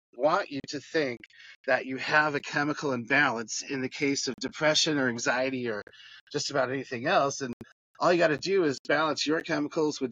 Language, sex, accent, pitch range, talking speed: English, male, American, 125-150 Hz, 195 wpm